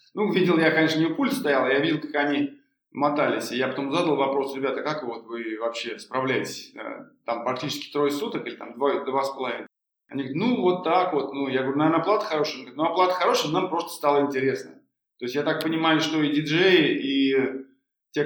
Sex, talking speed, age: male, 215 wpm, 20-39